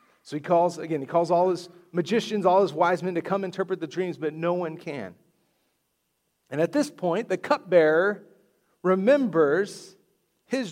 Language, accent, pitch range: English, American, 140-185 Hz